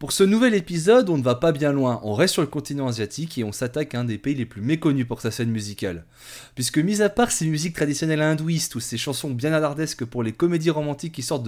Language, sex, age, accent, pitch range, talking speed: French, male, 20-39, French, 130-175 Hz, 255 wpm